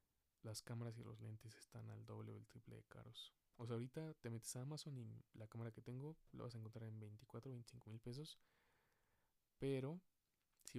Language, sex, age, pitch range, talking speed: Spanish, male, 20-39, 110-125 Hz, 205 wpm